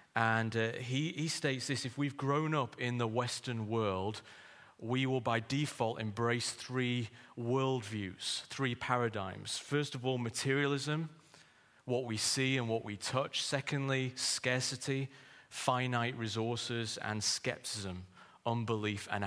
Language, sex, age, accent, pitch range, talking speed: English, male, 30-49, British, 110-135 Hz, 130 wpm